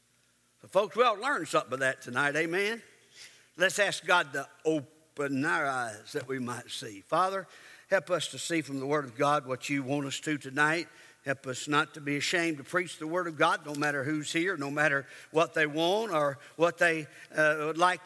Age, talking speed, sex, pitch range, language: 60-79, 210 wpm, male, 135-170 Hz, English